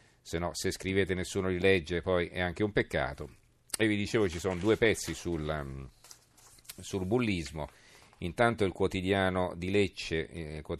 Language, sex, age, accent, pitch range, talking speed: Italian, male, 40-59, native, 80-100 Hz, 155 wpm